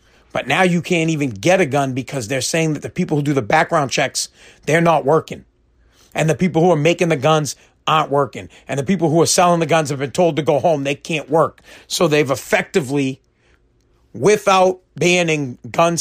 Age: 40-59